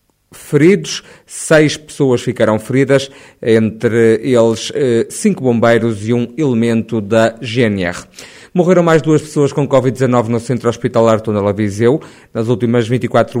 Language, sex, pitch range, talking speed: Portuguese, male, 115-140 Hz, 125 wpm